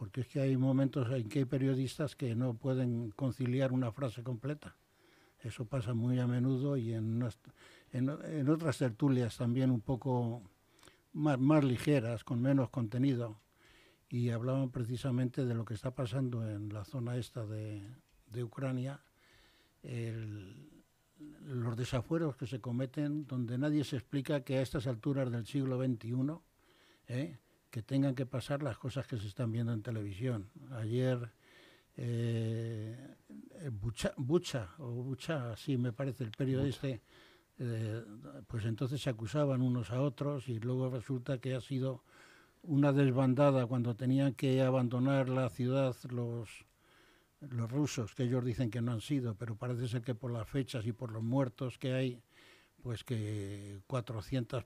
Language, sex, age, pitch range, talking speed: Spanish, male, 60-79, 120-135 Hz, 150 wpm